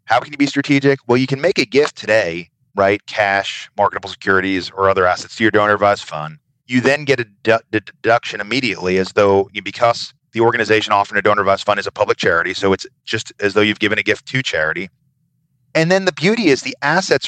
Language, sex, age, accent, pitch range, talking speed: English, male, 30-49, American, 100-135 Hz, 210 wpm